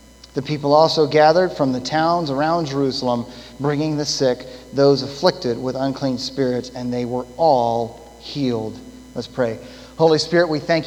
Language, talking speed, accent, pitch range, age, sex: English, 155 wpm, American, 125-165 Hz, 30-49, male